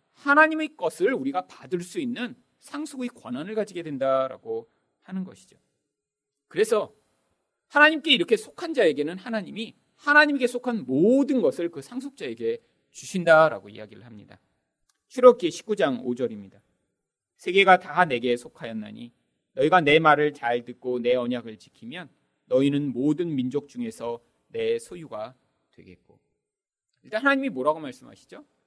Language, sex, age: Korean, male, 40-59